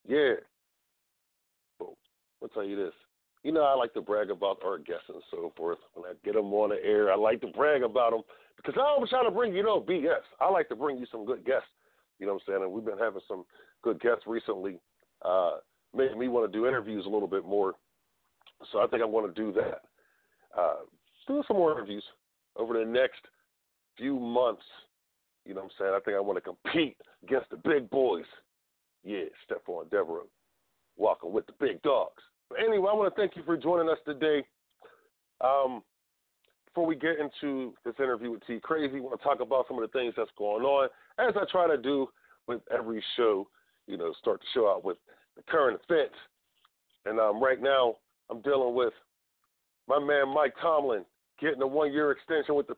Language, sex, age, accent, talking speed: English, male, 50-69, American, 200 wpm